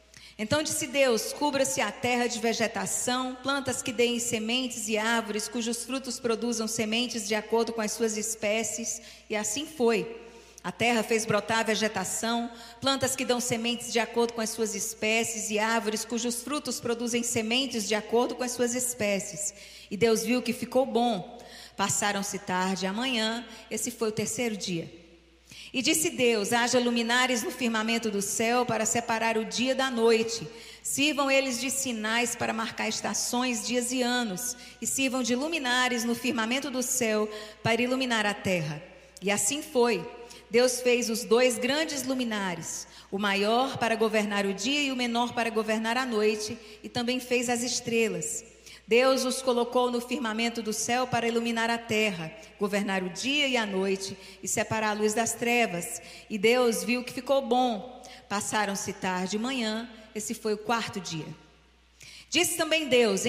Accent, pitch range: Brazilian, 215-245 Hz